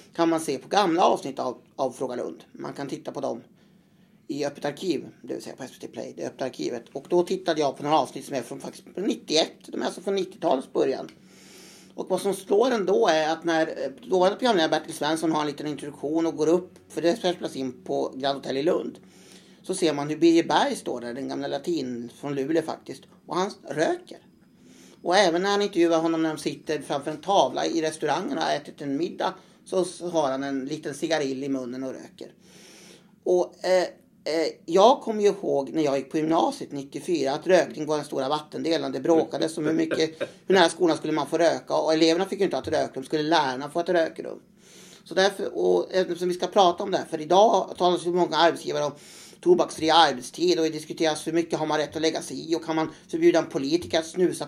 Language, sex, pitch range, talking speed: Swedish, male, 150-180 Hz, 220 wpm